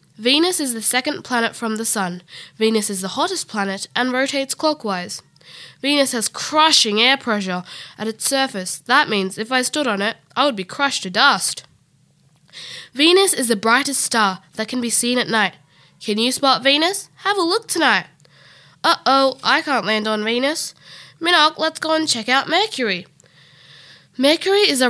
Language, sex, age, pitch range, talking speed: English, female, 10-29, 210-290 Hz, 175 wpm